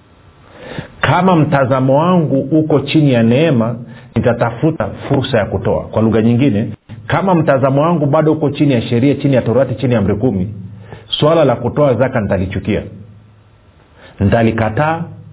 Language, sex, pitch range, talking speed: Swahili, male, 110-145 Hz, 135 wpm